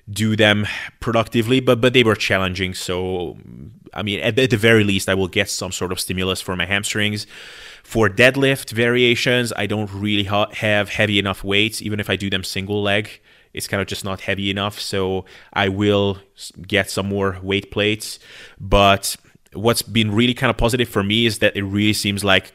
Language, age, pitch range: English, 20-39, 95-110 Hz